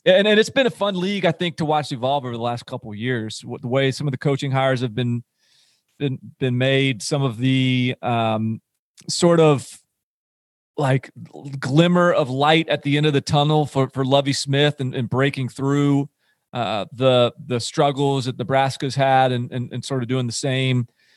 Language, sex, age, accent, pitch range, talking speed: English, male, 40-59, American, 125-150 Hz, 195 wpm